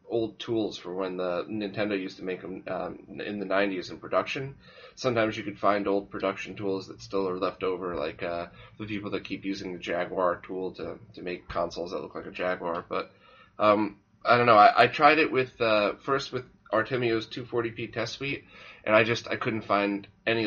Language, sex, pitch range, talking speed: English, male, 95-120 Hz, 210 wpm